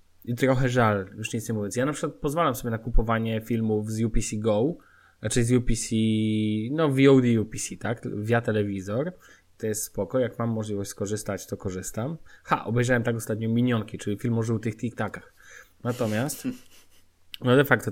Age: 20-39